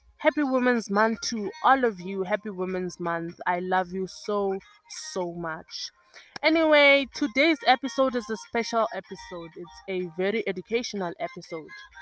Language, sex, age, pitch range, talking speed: English, female, 20-39, 180-240 Hz, 140 wpm